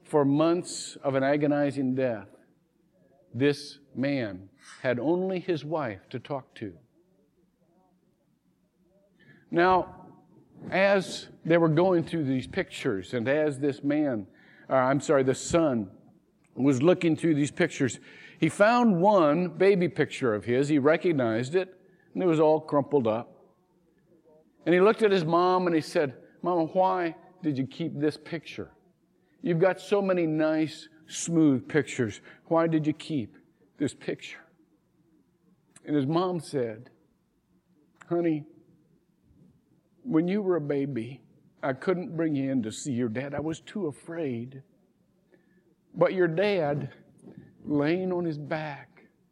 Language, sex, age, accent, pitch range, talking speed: English, male, 50-69, American, 145-180 Hz, 135 wpm